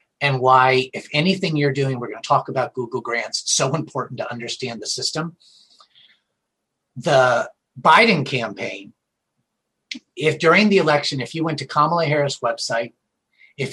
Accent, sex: American, male